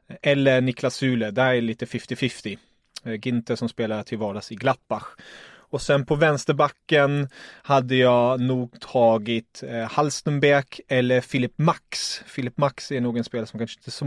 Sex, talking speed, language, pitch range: male, 155 wpm, English, 115-140 Hz